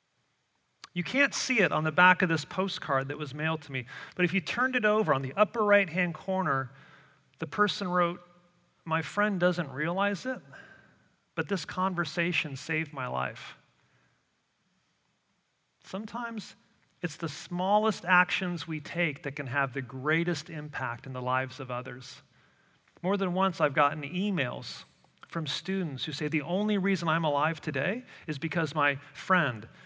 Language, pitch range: English, 140-180 Hz